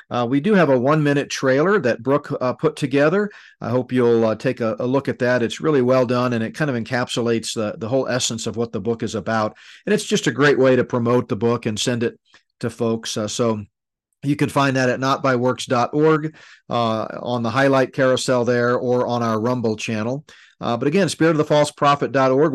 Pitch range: 120-140 Hz